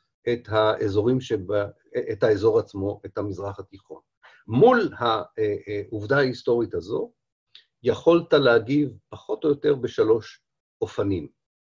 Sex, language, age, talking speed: male, Hebrew, 50-69, 105 wpm